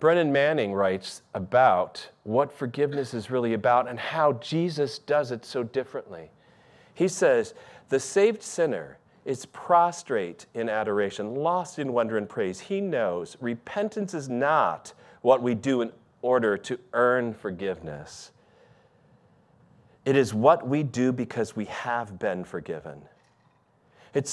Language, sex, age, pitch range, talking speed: English, male, 40-59, 120-165 Hz, 135 wpm